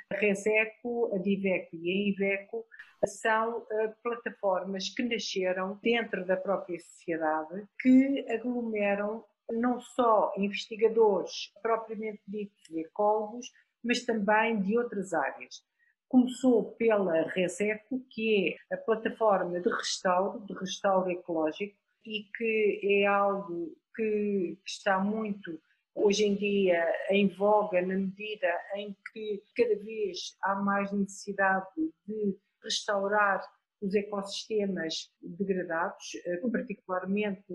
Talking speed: 110 wpm